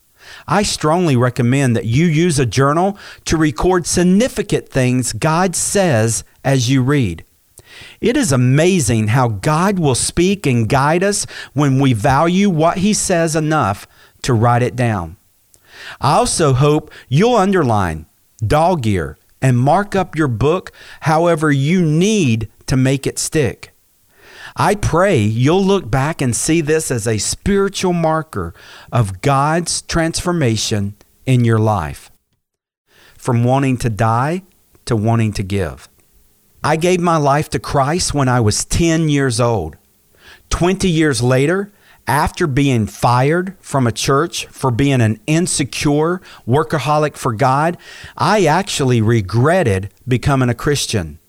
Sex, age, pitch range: male, 50-69, 115-165 Hz